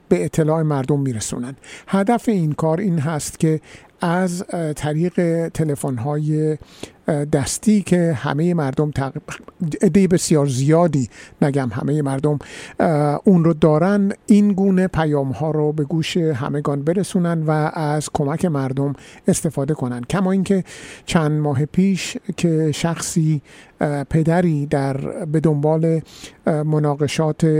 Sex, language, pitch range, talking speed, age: male, Persian, 145-175 Hz, 120 wpm, 50-69